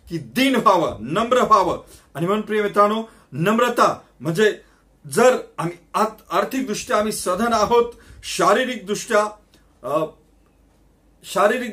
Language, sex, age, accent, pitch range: Marathi, male, 40-59, native, 170-225 Hz